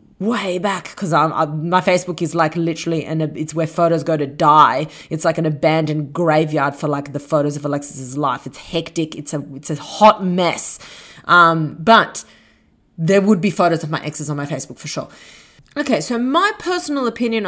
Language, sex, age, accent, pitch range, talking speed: English, female, 30-49, Australian, 160-215 Hz, 190 wpm